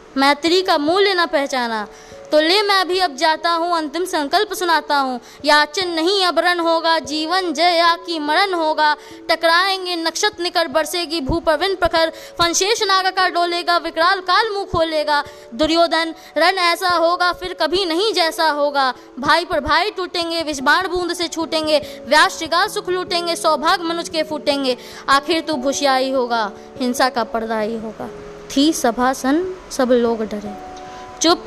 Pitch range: 275-345 Hz